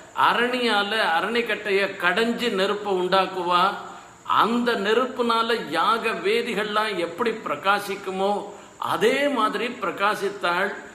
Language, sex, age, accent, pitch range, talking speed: Tamil, male, 50-69, native, 175-215 Hz, 75 wpm